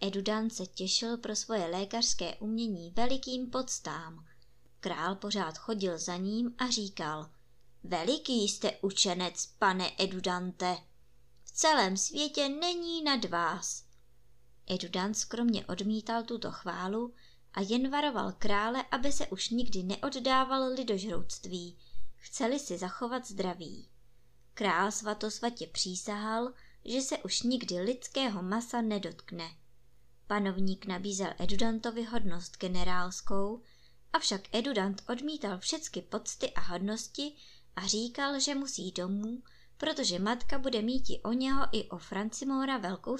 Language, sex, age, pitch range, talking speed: Czech, male, 20-39, 180-250 Hz, 120 wpm